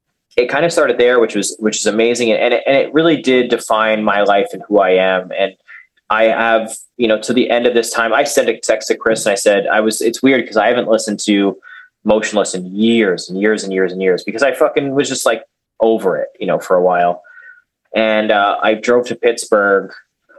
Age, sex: 20-39, male